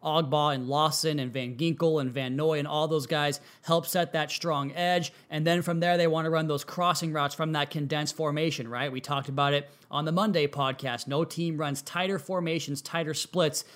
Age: 20-39